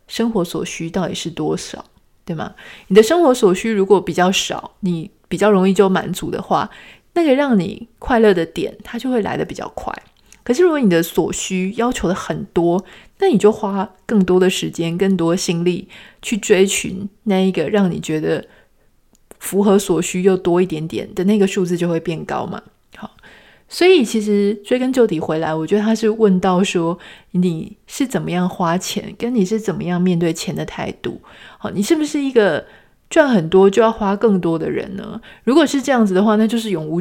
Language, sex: Chinese, female